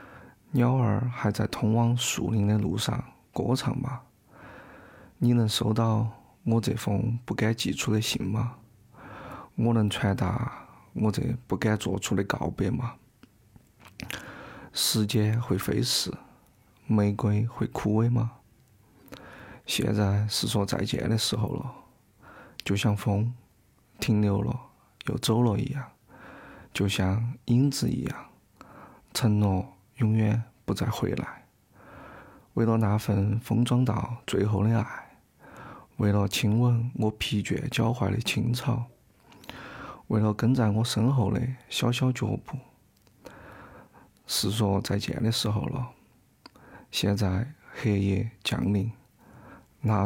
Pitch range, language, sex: 105-120 Hz, Chinese, male